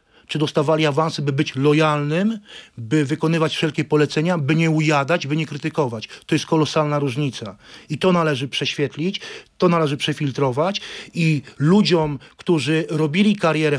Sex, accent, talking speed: male, native, 140 wpm